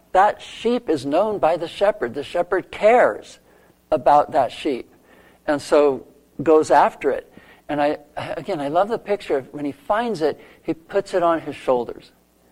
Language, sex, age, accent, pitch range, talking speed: English, male, 60-79, American, 130-160 Hz, 175 wpm